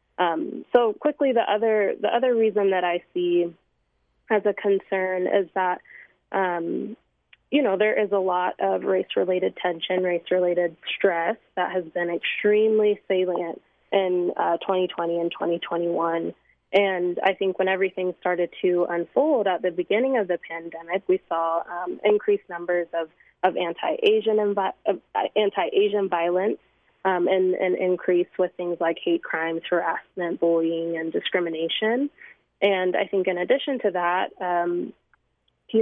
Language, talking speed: English, 145 wpm